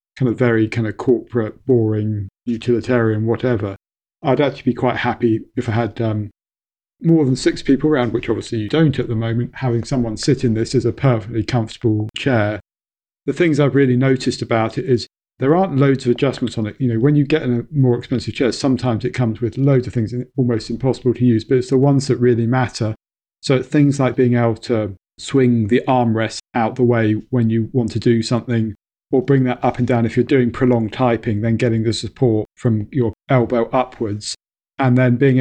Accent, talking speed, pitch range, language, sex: British, 210 wpm, 115-130 Hz, English, male